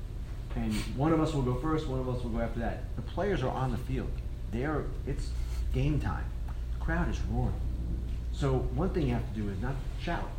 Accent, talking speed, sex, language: American, 220 wpm, male, English